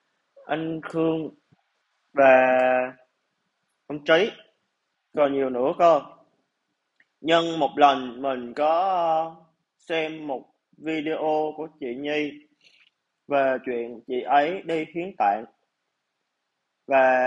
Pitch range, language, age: 130-165 Hz, Vietnamese, 20-39